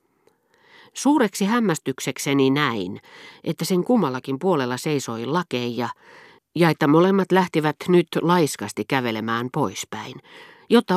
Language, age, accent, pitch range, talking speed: Finnish, 40-59, native, 120-170 Hz, 100 wpm